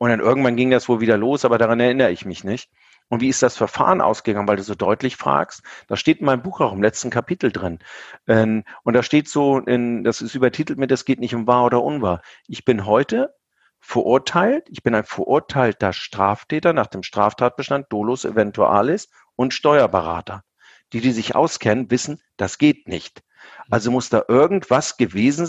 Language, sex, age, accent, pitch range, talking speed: German, male, 50-69, German, 115-135 Hz, 185 wpm